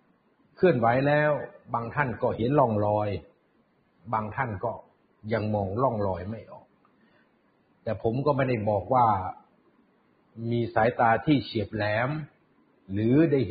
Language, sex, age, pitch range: Thai, male, 60-79, 105-145 Hz